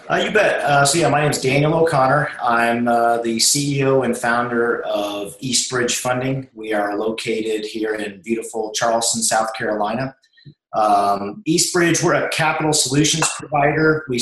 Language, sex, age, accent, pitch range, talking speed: English, male, 40-59, American, 110-135 Hz, 155 wpm